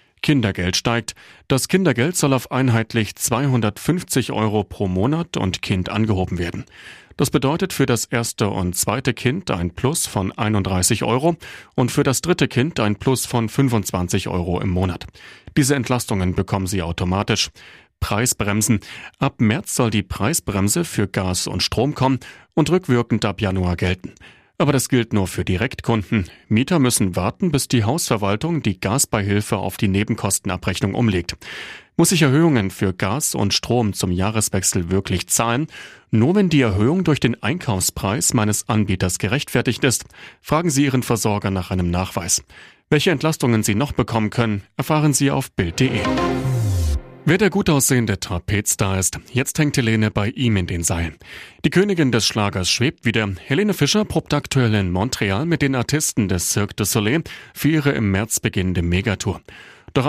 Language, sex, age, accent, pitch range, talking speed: German, male, 40-59, German, 95-135 Hz, 160 wpm